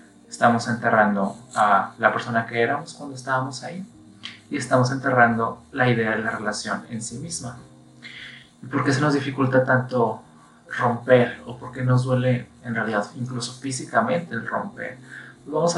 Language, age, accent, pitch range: Spanish, 30-49, Mexican, 115-130 Hz